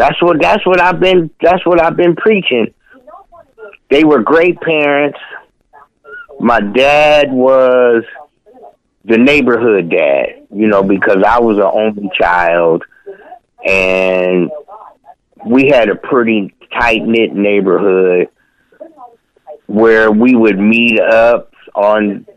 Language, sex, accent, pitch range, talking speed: English, male, American, 110-170 Hz, 115 wpm